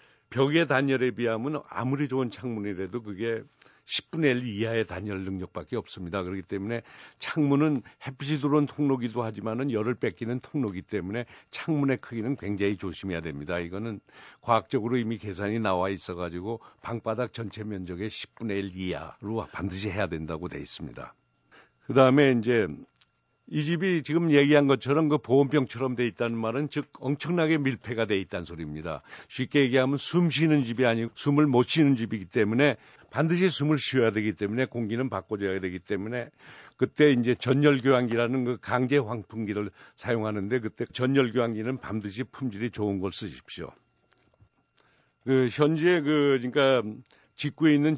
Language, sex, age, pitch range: Korean, male, 60-79, 105-135 Hz